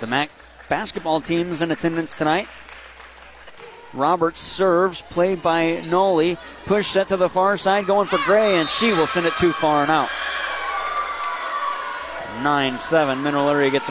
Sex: male